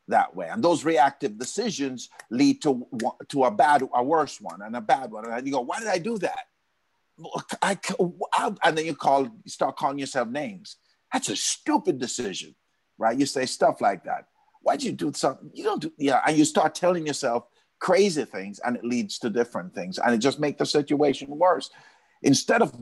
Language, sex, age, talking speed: English, male, 50-69, 205 wpm